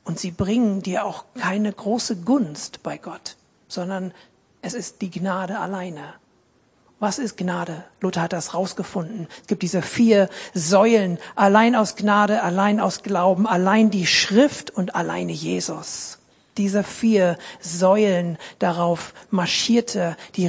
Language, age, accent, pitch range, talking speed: German, 50-69, German, 180-220 Hz, 135 wpm